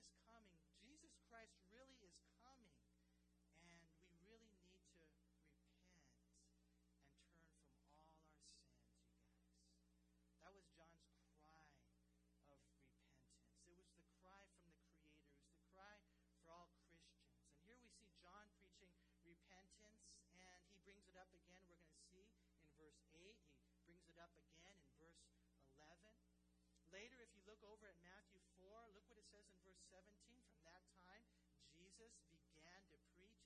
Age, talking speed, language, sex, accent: 40-59, 150 wpm, English, male, American